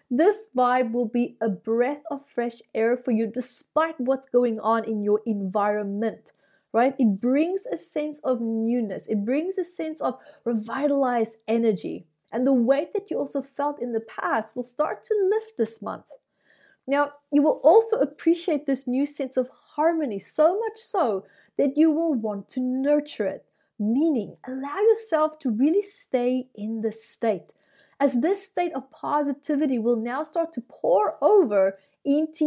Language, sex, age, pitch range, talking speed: English, female, 30-49, 230-310 Hz, 165 wpm